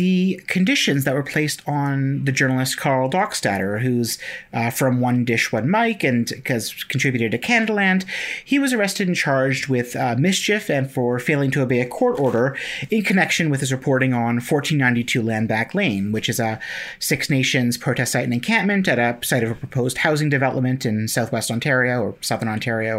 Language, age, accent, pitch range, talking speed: English, 30-49, American, 125-175 Hz, 185 wpm